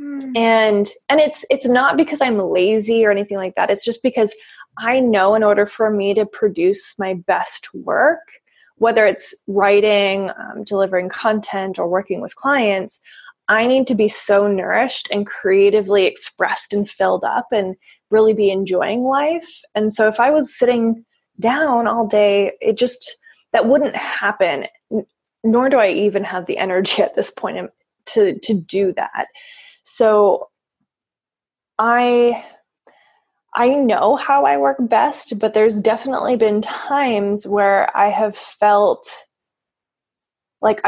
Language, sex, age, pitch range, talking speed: English, female, 20-39, 200-245 Hz, 145 wpm